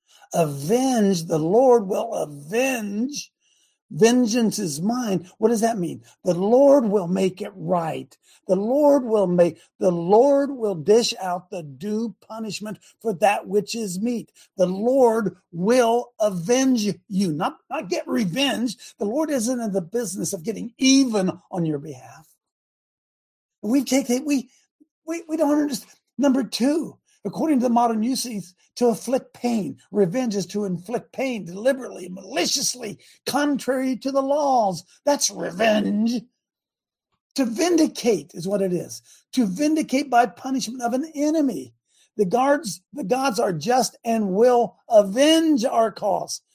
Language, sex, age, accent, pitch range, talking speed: English, male, 60-79, American, 190-260 Hz, 140 wpm